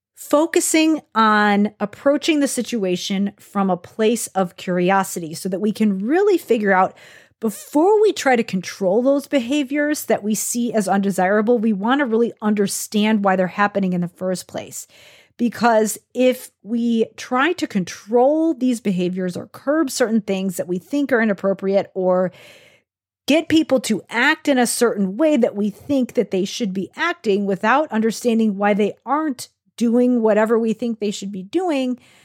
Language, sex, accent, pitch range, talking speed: English, female, American, 195-260 Hz, 165 wpm